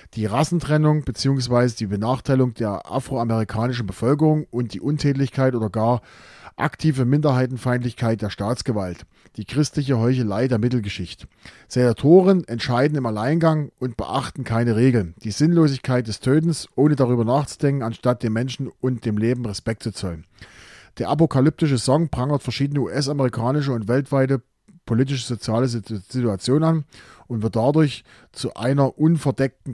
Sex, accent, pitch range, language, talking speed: male, German, 115-145 Hz, German, 130 wpm